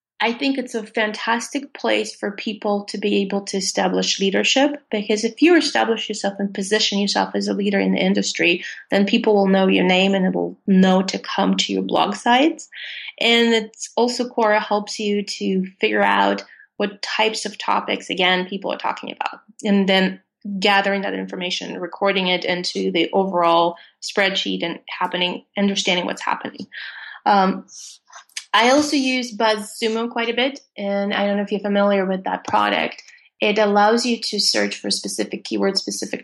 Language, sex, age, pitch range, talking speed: English, female, 30-49, 185-225 Hz, 175 wpm